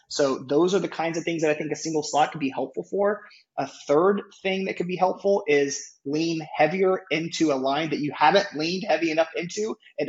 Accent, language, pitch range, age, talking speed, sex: American, English, 135-165 Hz, 20-39, 225 wpm, male